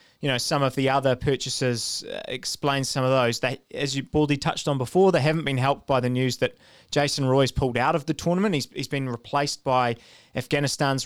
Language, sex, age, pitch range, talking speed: English, male, 20-39, 125-155 Hz, 210 wpm